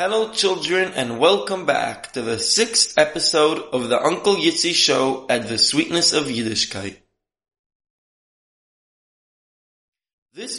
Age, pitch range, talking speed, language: 20-39, 120-170 Hz, 115 wpm, English